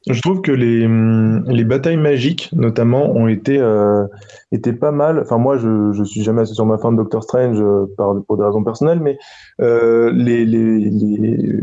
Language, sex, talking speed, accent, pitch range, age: French, male, 190 wpm, French, 110-130 Hz, 20-39